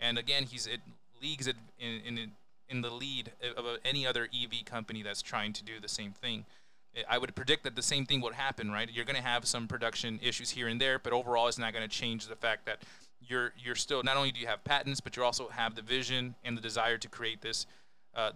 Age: 20-39